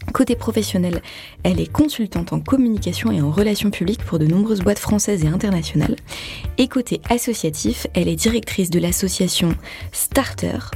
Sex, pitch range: female, 170-235 Hz